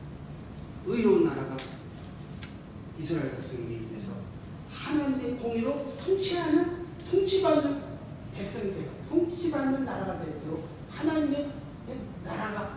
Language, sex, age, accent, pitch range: Korean, male, 40-59, native, 235-310 Hz